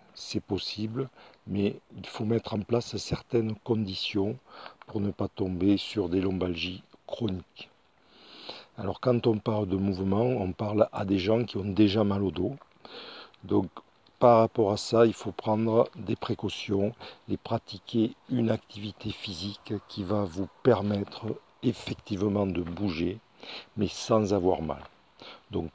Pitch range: 95-115 Hz